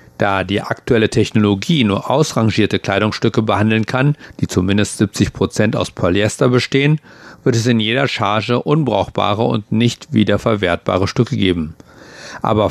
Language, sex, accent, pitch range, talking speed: German, male, German, 100-125 Hz, 125 wpm